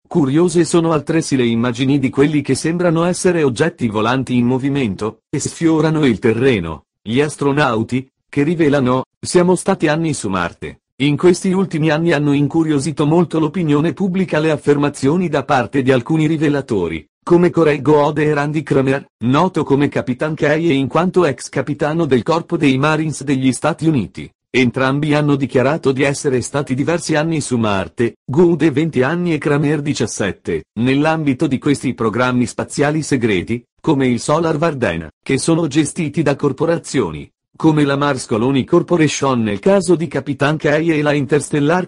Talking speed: 155 wpm